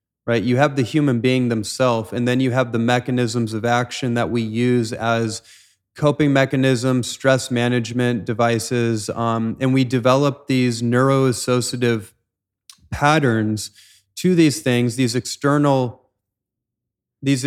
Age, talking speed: 30-49, 125 wpm